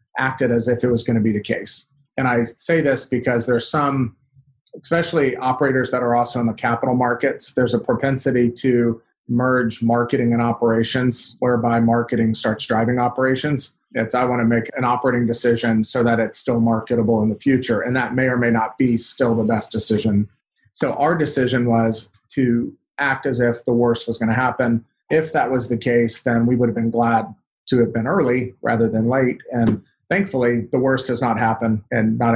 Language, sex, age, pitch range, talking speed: English, male, 30-49, 115-130 Hz, 200 wpm